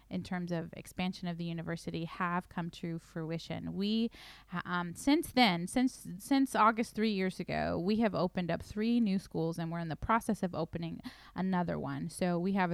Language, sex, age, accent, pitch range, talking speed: English, female, 20-39, American, 170-205 Hz, 190 wpm